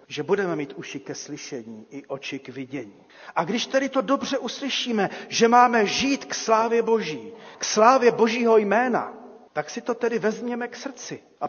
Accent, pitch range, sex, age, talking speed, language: native, 150-205 Hz, male, 40-59, 180 wpm, Czech